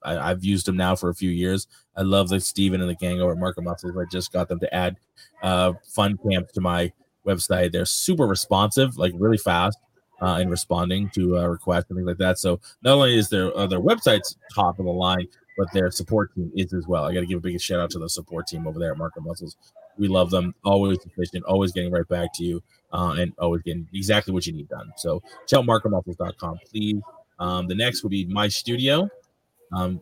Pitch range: 90-105 Hz